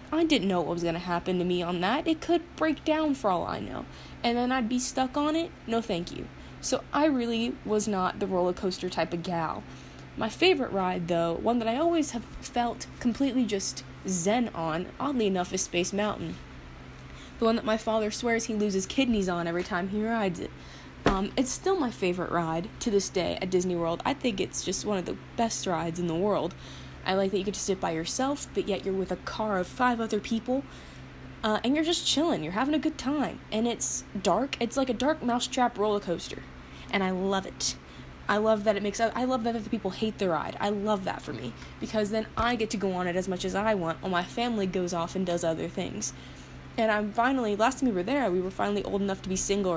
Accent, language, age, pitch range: American, English, 20-39, 180-235 Hz